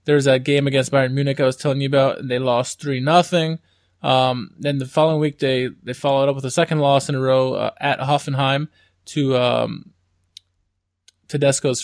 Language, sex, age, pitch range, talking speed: English, male, 20-39, 125-160 Hz, 195 wpm